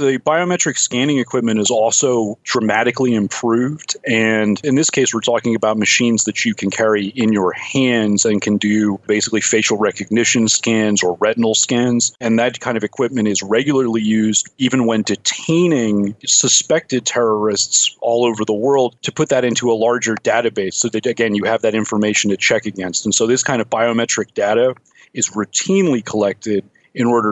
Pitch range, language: 105-120 Hz, English